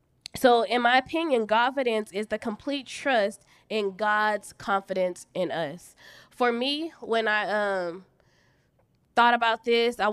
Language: English